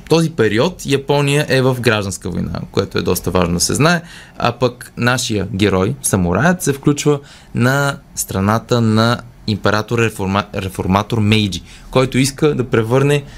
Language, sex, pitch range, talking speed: Bulgarian, male, 105-140 Hz, 140 wpm